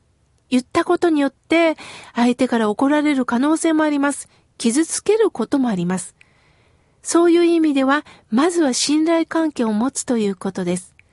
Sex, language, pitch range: female, Japanese, 250-340 Hz